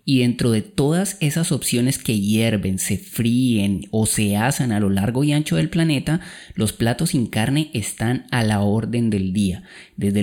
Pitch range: 110-155 Hz